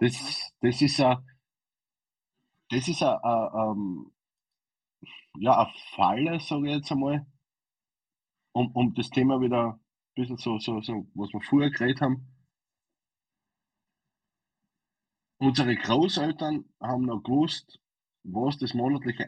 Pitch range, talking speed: 110-145 Hz, 105 wpm